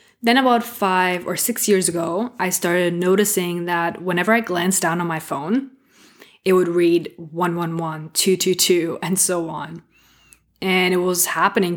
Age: 20-39